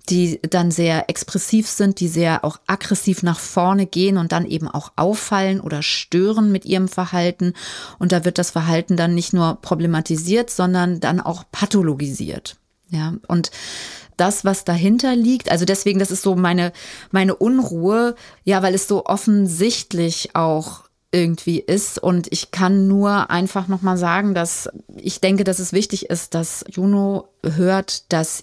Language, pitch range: German, 170-200 Hz